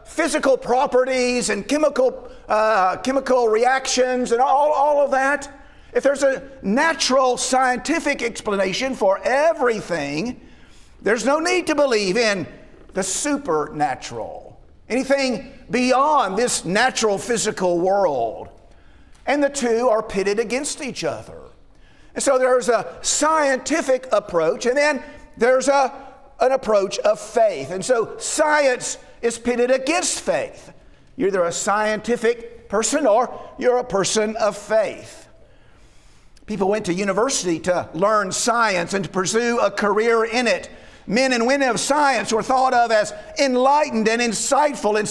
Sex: male